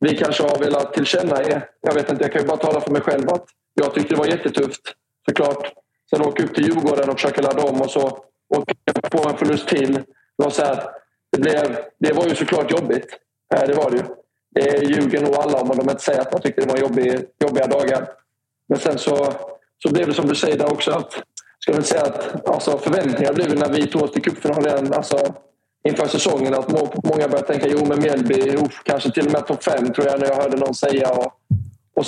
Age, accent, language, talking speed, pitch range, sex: 20-39, native, Swedish, 225 wpm, 135-145 Hz, male